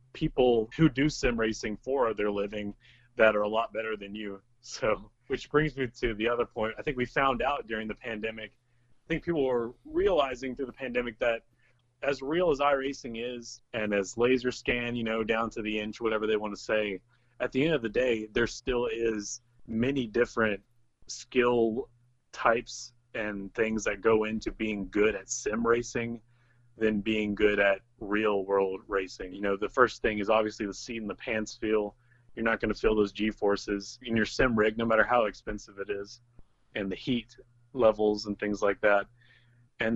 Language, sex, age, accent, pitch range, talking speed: English, male, 30-49, American, 105-120 Hz, 190 wpm